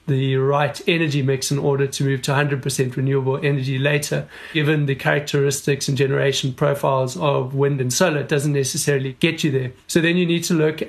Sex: male